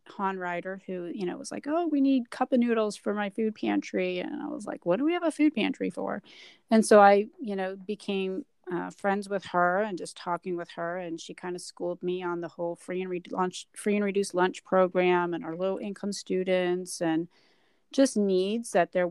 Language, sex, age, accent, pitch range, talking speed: English, female, 40-59, American, 180-220 Hz, 220 wpm